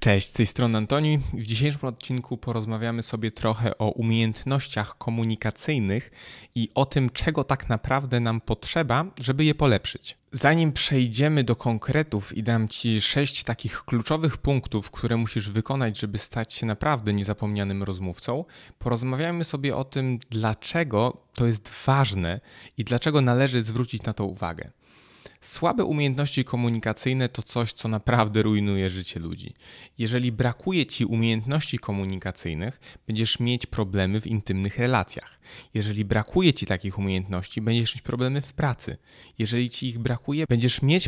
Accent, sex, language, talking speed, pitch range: native, male, Polish, 140 wpm, 110-130 Hz